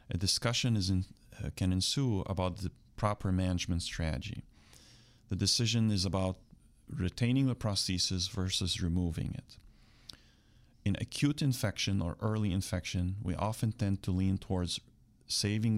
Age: 30-49